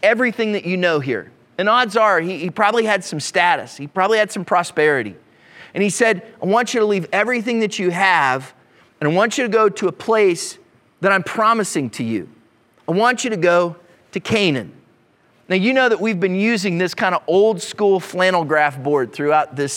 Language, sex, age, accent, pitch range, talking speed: English, male, 30-49, American, 155-215 Hz, 210 wpm